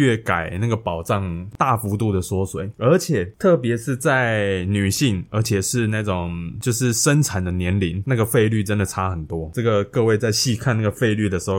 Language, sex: Chinese, male